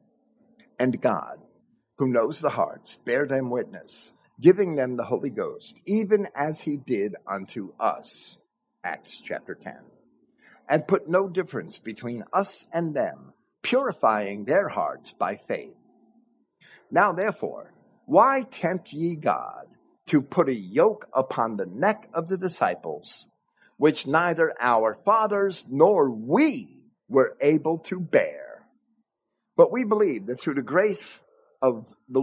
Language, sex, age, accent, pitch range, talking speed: English, male, 50-69, American, 135-215 Hz, 130 wpm